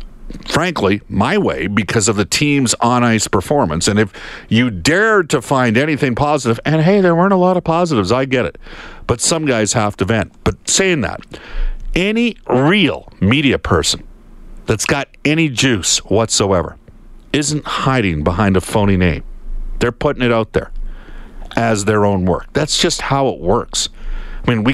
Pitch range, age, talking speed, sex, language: 105-145 Hz, 50-69, 165 wpm, male, English